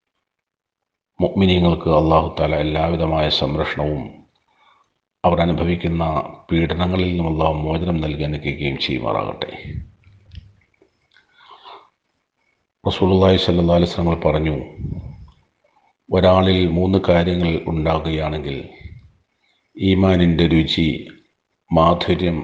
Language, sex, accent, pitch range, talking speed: Malayalam, male, native, 80-90 Hz, 60 wpm